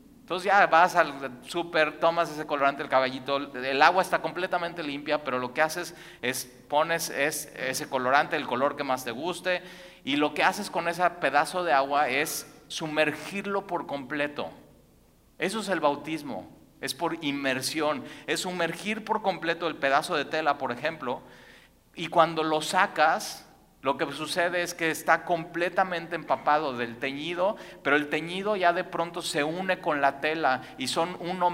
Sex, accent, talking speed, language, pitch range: male, Mexican, 165 wpm, Spanish, 140-175 Hz